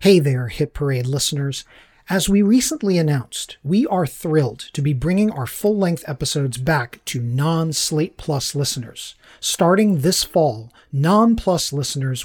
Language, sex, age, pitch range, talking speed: English, male, 40-59, 145-180 Hz, 135 wpm